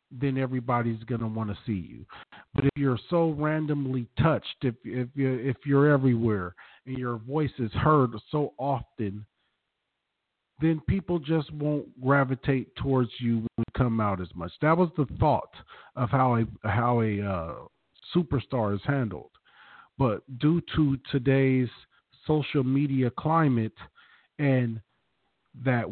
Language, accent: English, American